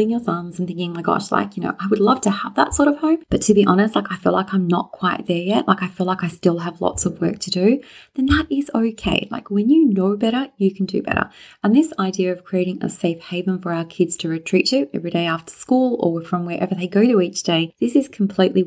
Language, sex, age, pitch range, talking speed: English, female, 30-49, 170-210 Hz, 275 wpm